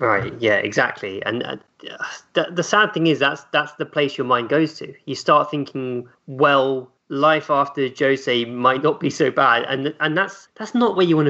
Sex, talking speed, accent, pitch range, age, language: male, 200 wpm, British, 125-160 Hz, 20-39, English